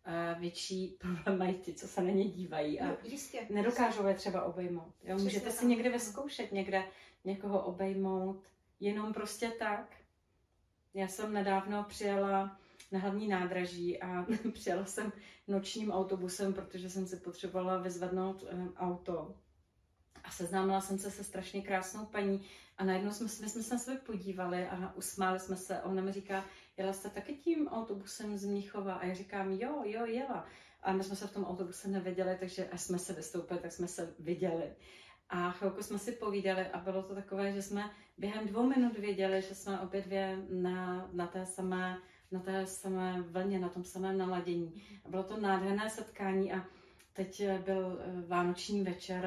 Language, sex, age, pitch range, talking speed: Czech, female, 30-49, 180-200 Hz, 165 wpm